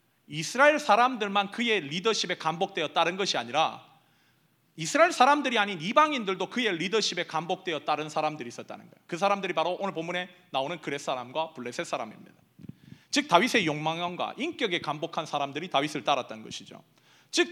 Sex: male